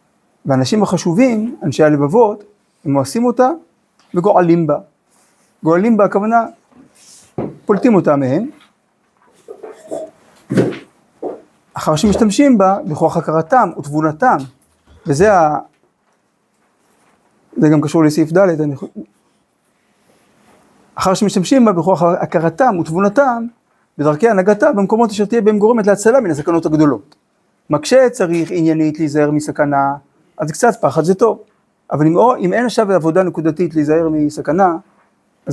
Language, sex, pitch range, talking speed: Hebrew, male, 155-215 Hz, 110 wpm